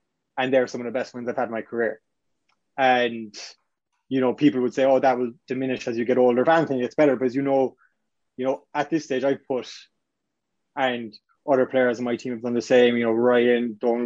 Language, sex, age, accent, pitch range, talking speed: English, male, 20-39, Irish, 120-135 Hz, 235 wpm